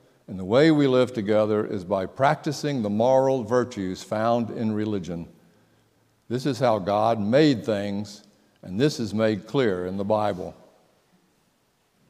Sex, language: male, English